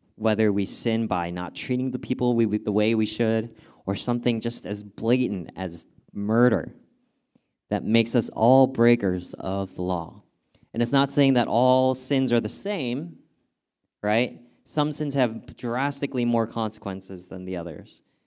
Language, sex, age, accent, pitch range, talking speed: English, male, 20-39, American, 100-130 Hz, 160 wpm